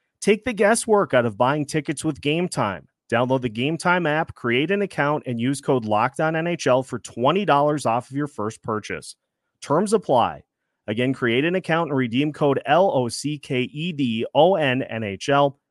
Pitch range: 115-150 Hz